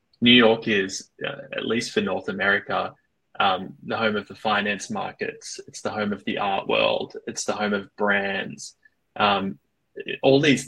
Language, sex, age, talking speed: English, male, 20-39, 175 wpm